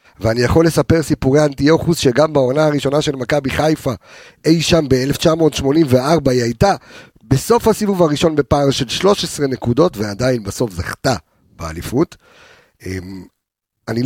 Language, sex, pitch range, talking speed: Hebrew, male, 120-165 Hz, 120 wpm